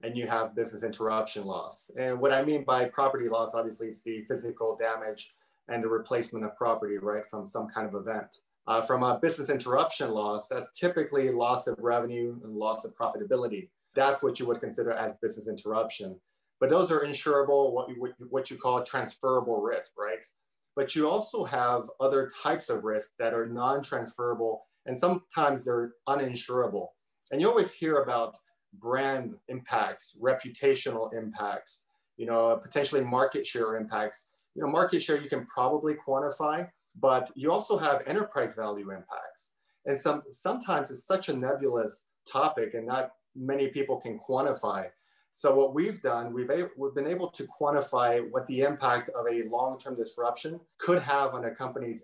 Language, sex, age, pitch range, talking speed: English, male, 30-49, 115-140 Hz, 165 wpm